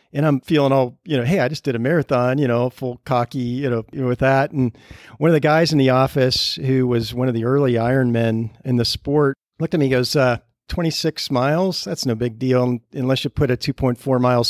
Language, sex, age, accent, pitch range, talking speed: English, male, 50-69, American, 120-145 Hz, 230 wpm